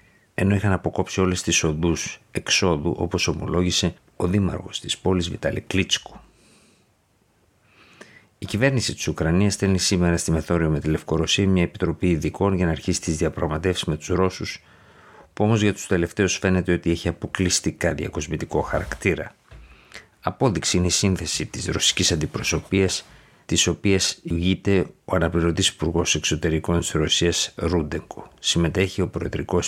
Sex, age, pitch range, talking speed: male, 50-69, 80-95 Hz, 135 wpm